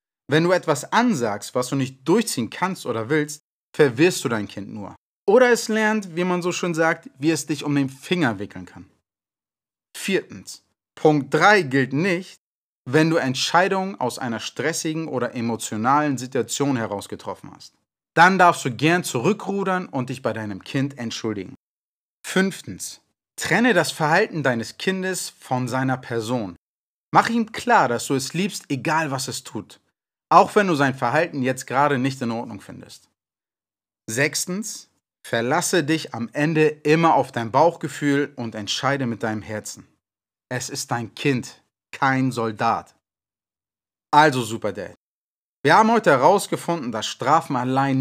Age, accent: 30-49, German